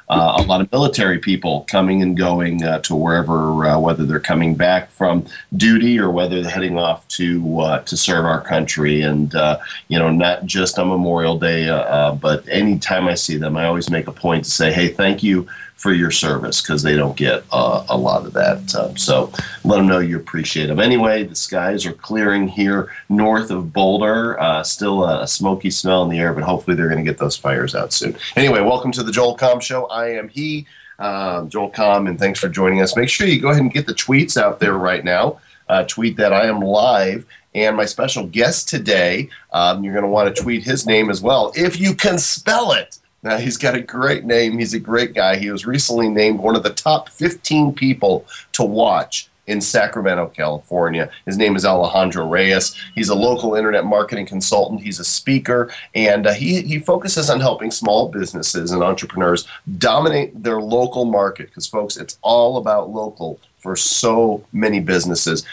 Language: English